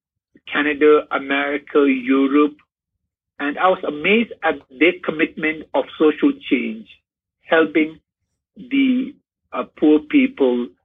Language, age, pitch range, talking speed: English, 50-69, 135-195 Hz, 100 wpm